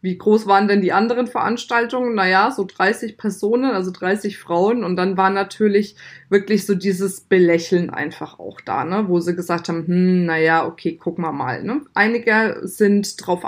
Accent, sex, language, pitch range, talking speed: German, female, German, 185-215 Hz, 180 wpm